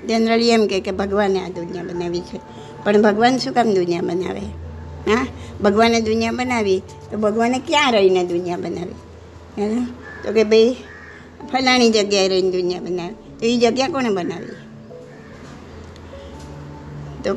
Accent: American